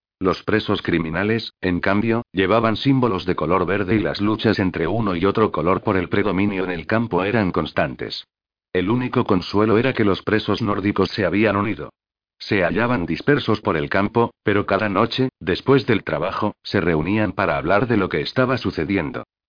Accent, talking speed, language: Spanish, 180 wpm, Spanish